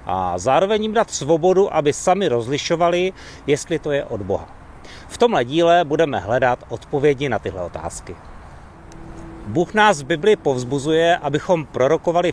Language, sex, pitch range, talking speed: Czech, male, 110-170 Hz, 140 wpm